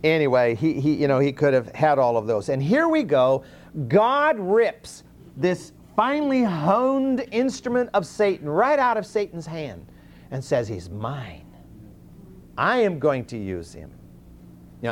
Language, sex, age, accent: English, male, 50-69, American